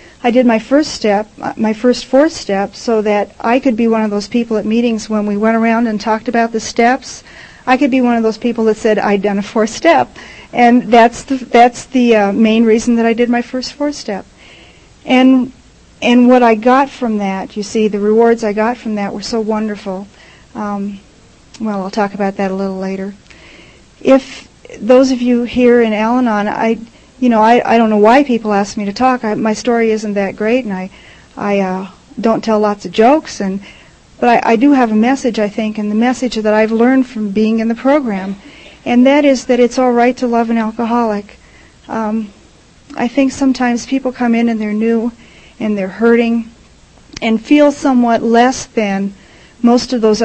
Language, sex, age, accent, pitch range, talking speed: English, female, 40-59, American, 210-245 Hz, 205 wpm